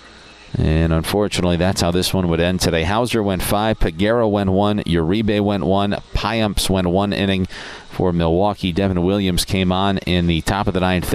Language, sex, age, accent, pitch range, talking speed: English, male, 40-59, American, 85-105 Hz, 185 wpm